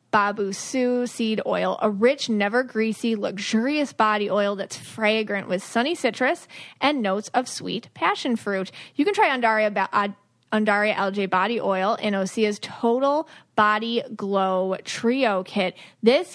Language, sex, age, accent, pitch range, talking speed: English, female, 30-49, American, 210-270 Hz, 135 wpm